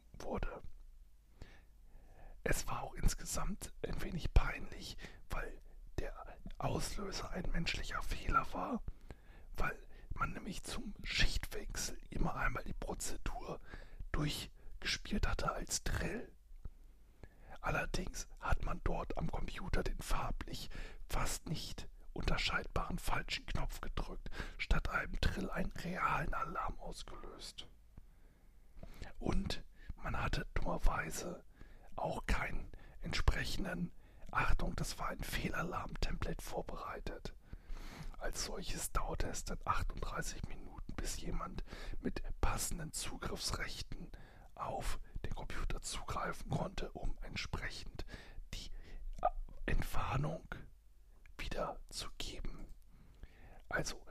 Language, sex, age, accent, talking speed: German, male, 60-79, German, 95 wpm